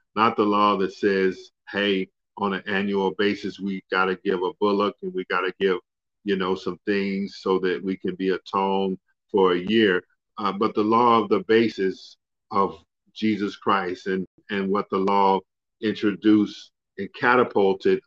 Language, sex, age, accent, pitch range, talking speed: English, male, 50-69, American, 95-110 Hz, 175 wpm